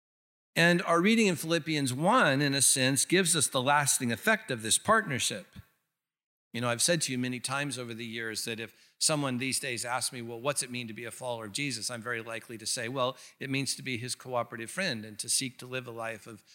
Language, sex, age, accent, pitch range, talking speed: English, male, 50-69, American, 125-155 Hz, 240 wpm